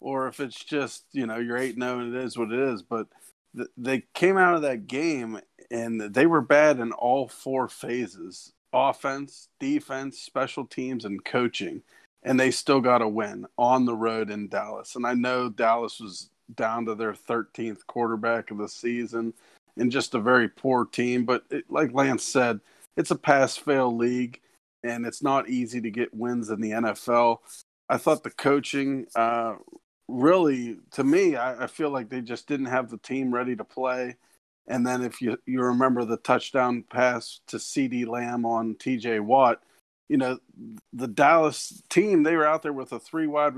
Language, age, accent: English, 40-59, American